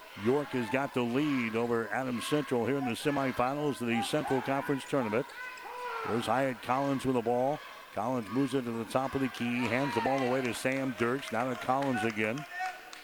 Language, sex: English, male